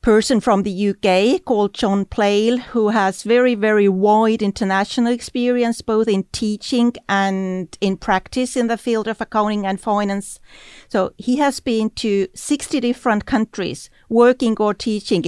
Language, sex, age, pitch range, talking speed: English, female, 40-59, 195-235 Hz, 150 wpm